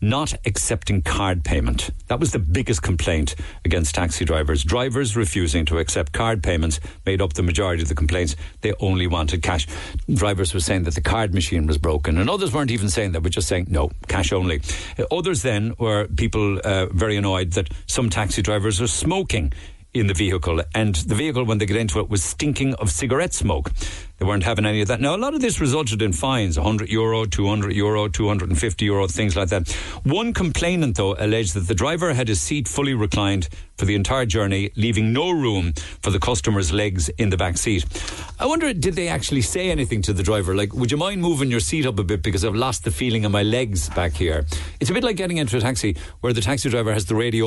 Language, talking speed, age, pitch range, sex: English, 215 wpm, 60-79, 90-120 Hz, male